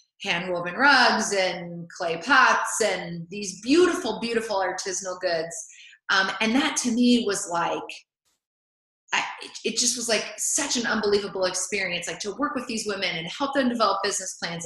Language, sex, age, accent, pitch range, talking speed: English, female, 30-49, American, 185-230 Hz, 160 wpm